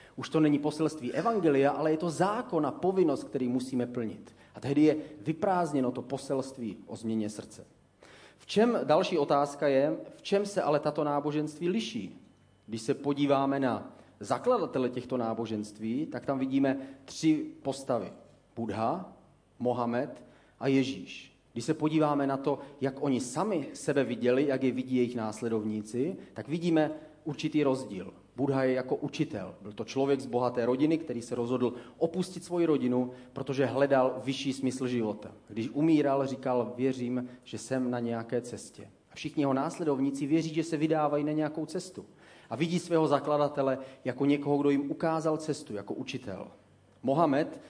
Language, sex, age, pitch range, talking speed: Czech, male, 40-59, 125-150 Hz, 155 wpm